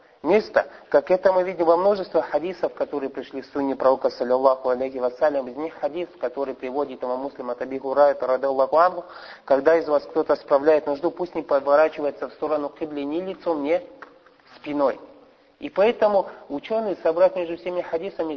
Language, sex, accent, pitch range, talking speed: Russian, male, native, 130-170 Hz, 155 wpm